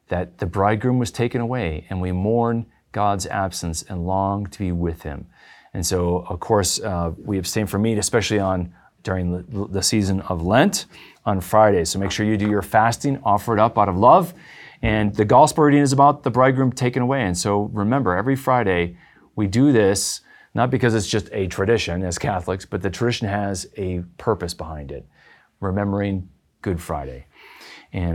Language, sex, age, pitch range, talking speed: English, male, 40-59, 90-120 Hz, 185 wpm